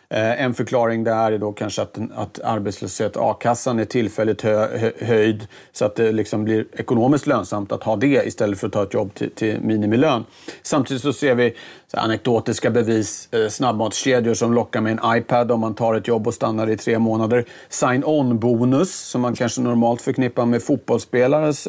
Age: 40-59